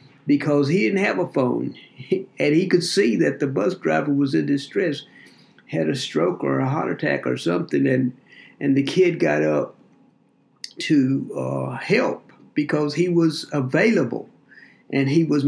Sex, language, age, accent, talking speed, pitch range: male, English, 60-79, American, 165 wpm, 120-175 Hz